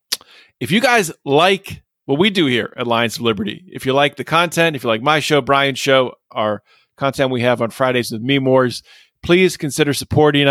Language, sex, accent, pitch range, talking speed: English, male, American, 125-160 Hz, 200 wpm